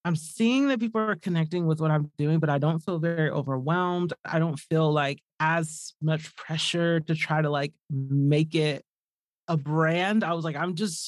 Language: English